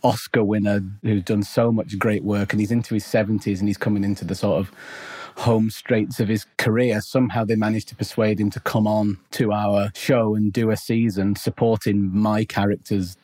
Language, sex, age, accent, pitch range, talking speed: English, male, 30-49, British, 105-125 Hz, 200 wpm